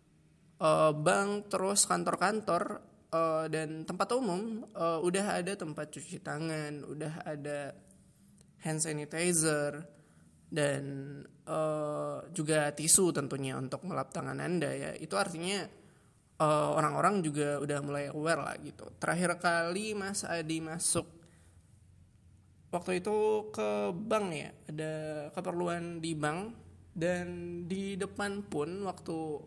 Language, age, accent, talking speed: Indonesian, 20-39, native, 115 wpm